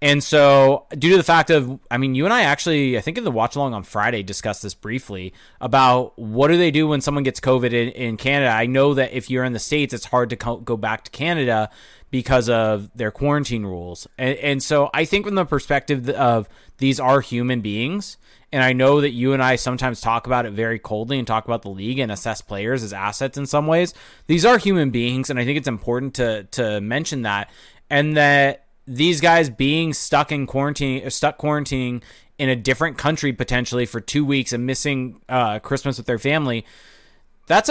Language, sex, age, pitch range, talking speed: English, male, 20-39, 120-145 Hz, 215 wpm